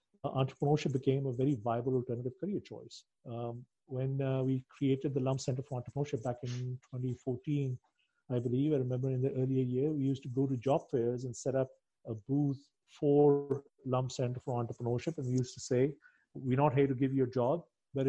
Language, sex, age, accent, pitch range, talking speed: English, male, 50-69, Indian, 125-140 Hz, 200 wpm